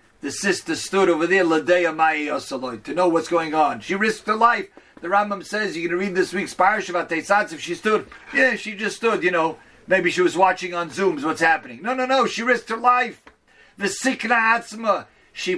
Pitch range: 160-215 Hz